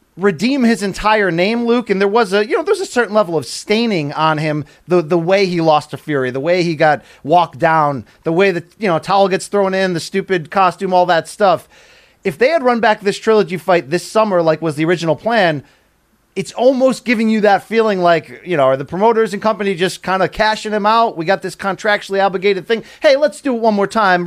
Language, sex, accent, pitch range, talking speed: English, male, American, 165-210 Hz, 235 wpm